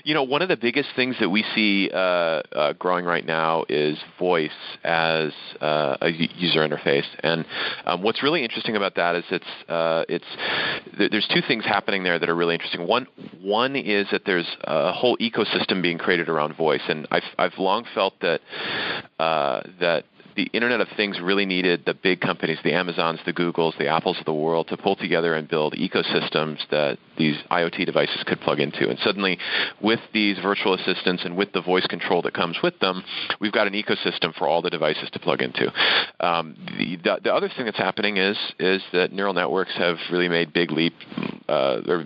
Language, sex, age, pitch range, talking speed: English, male, 30-49, 80-95 Hz, 200 wpm